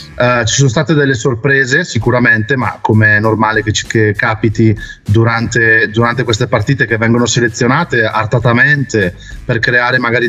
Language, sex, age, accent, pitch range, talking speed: Italian, male, 30-49, native, 115-140 Hz, 140 wpm